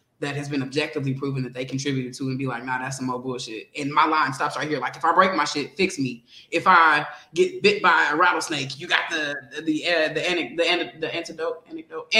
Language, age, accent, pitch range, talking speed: English, 20-39, American, 140-200 Hz, 250 wpm